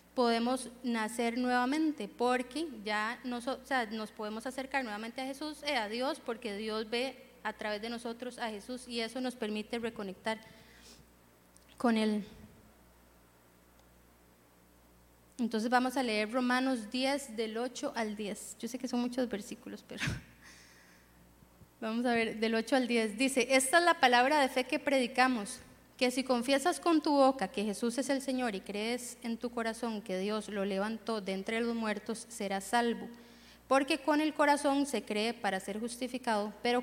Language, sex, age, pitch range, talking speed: Spanish, female, 20-39, 215-255 Hz, 165 wpm